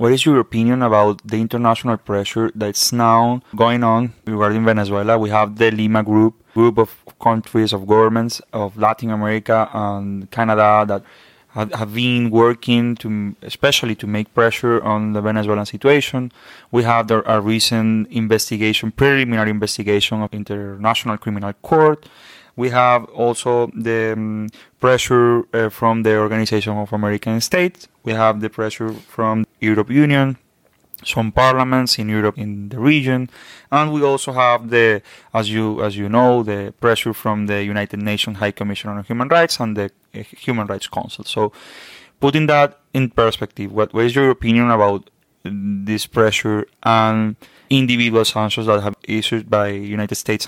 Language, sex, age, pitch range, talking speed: English, male, 20-39, 105-120 Hz, 150 wpm